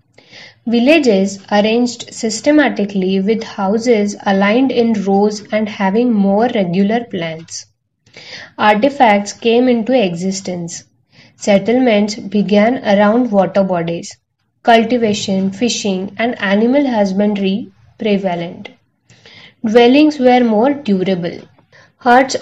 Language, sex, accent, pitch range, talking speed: English, female, Indian, 195-240 Hz, 90 wpm